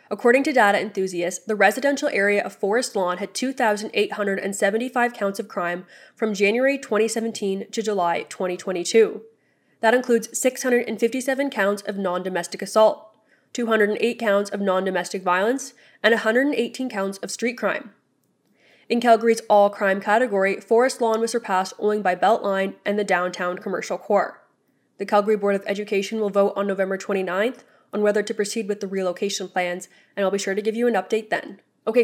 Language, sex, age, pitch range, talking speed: English, female, 20-39, 195-240 Hz, 155 wpm